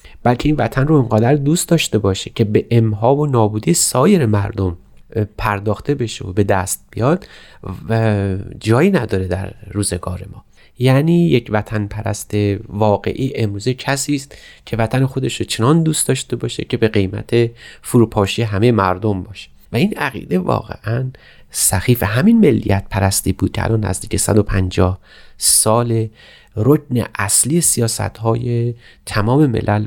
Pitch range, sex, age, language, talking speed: 100-120 Hz, male, 30-49, Persian, 135 wpm